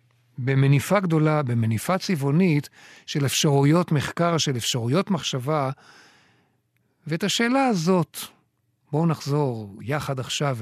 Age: 50-69